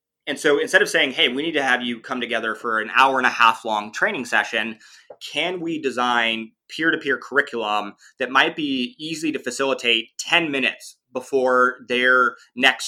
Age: 20-39